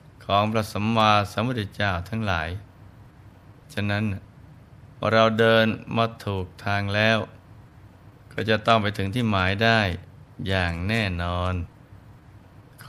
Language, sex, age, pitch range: Thai, male, 20-39, 100-120 Hz